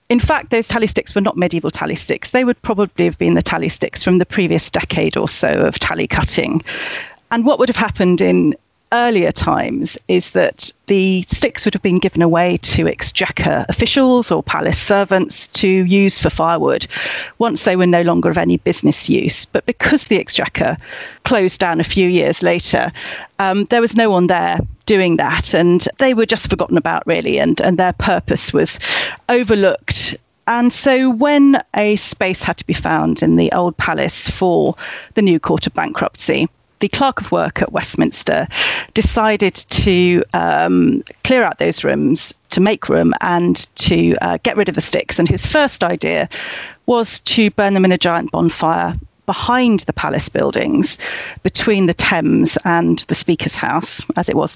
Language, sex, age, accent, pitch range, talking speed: English, female, 40-59, British, 175-235 Hz, 180 wpm